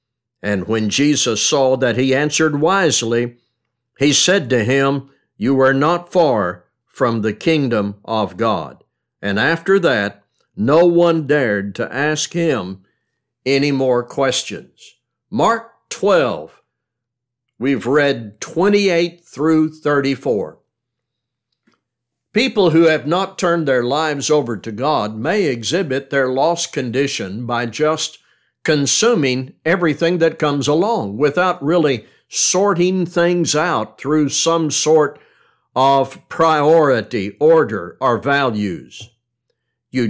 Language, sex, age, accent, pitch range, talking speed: English, male, 60-79, American, 125-165 Hz, 115 wpm